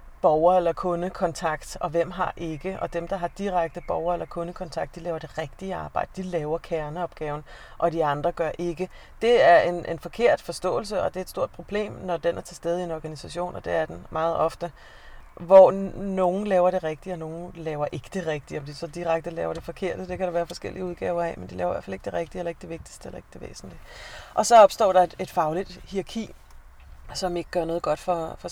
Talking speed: 235 wpm